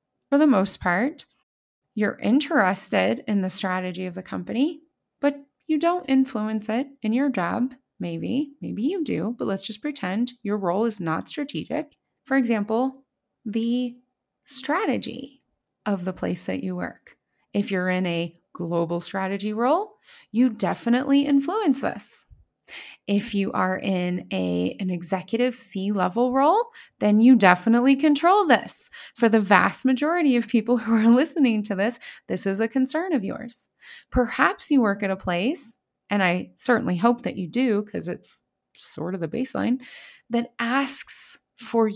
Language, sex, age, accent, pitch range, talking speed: English, female, 20-39, American, 195-270 Hz, 150 wpm